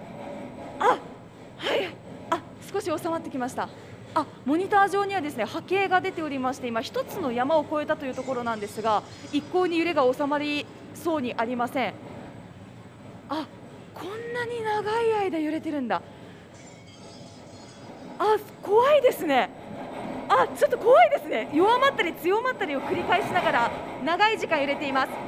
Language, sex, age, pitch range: Japanese, female, 20-39, 285-420 Hz